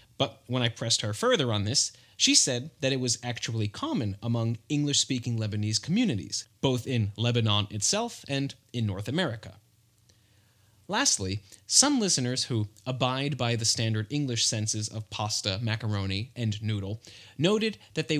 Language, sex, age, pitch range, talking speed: English, male, 30-49, 105-130 Hz, 150 wpm